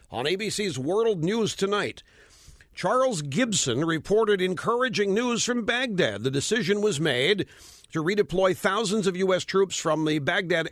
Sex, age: male, 50-69